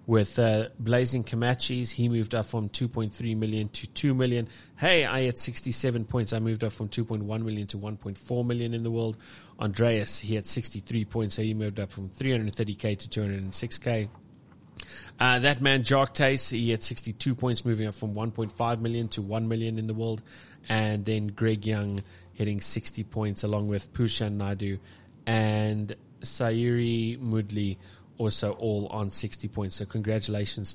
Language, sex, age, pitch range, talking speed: English, male, 30-49, 105-120 Hz, 165 wpm